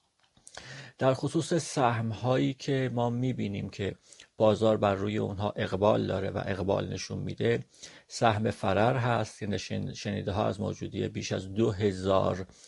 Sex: male